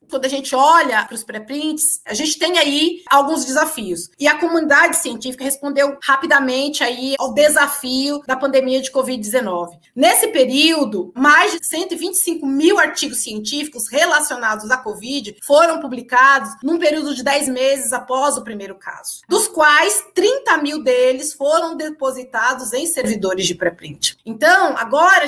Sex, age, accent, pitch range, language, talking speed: female, 20-39, Brazilian, 255-315 Hz, Portuguese, 145 wpm